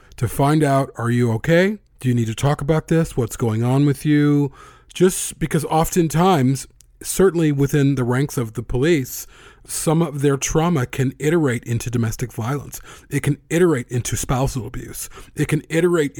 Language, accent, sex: English, American, male